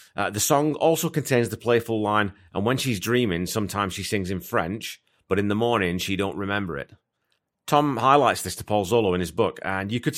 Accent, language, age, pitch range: British, English, 30-49, 95-125 Hz